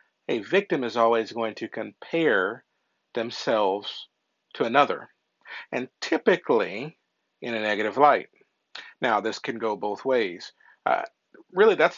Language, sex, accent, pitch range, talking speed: English, male, American, 115-140 Hz, 125 wpm